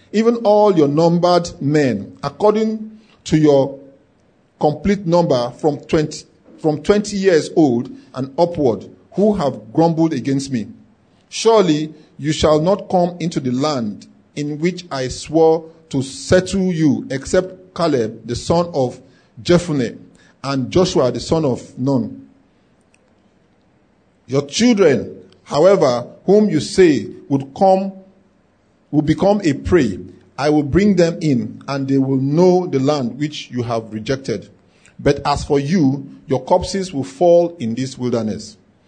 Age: 50-69